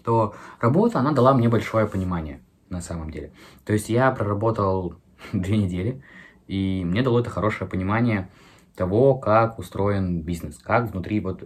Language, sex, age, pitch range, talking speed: Russian, male, 20-39, 90-120 Hz, 150 wpm